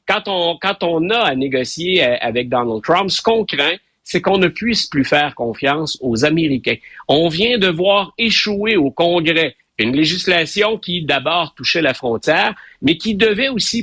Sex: male